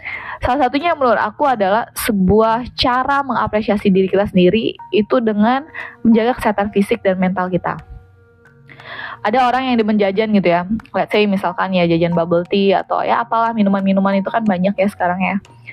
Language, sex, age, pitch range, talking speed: Indonesian, female, 20-39, 190-250 Hz, 170 wpm